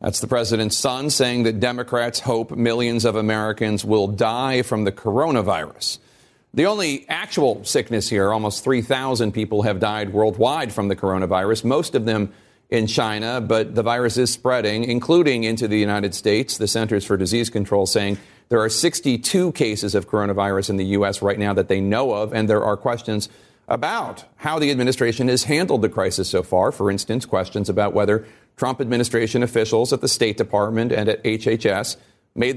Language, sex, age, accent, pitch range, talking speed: English, male, 40-59, American, 105-125 Hz, 175 wpm